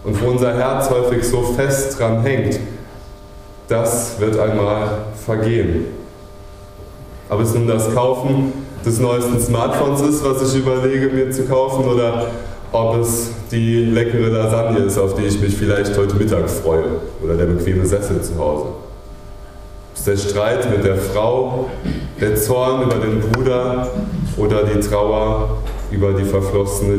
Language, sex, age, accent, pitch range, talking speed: German, male, 20-39, German, 100-120 Hz, 150 wpm